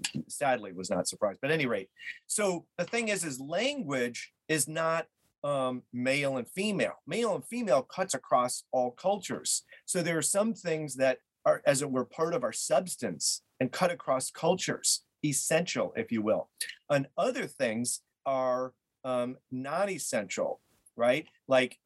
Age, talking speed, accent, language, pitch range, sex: 40-59, 160 wpm, American, English, 125-170 Hz, male